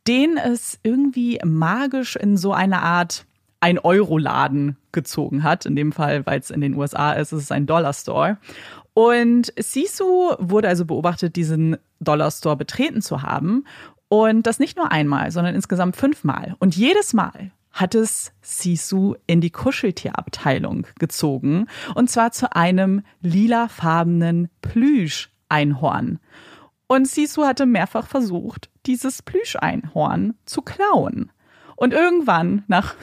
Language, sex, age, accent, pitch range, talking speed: German, female, 30-49, German, 160-220 Hz, 125 wpm